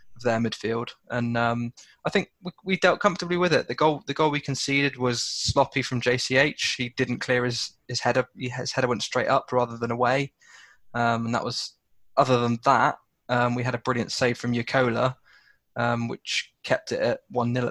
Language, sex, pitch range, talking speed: English, male, 120-130 Hz, 190 wpm